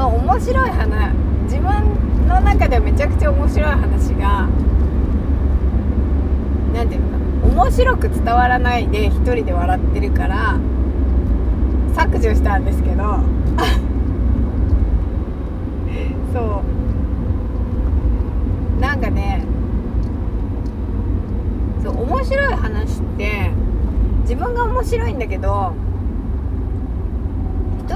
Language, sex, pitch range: Japanese, female, 70-90 Hz